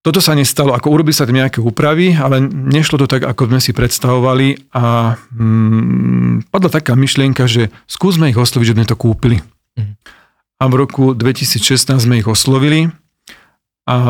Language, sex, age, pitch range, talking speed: Slovak, male, 40-59, 115-135 Hz, 160 wpm